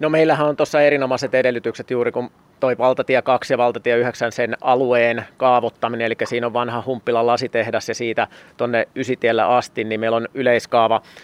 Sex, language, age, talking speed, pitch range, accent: male, Finnish, 30-49, 170 wpm, 115-125 Hz, native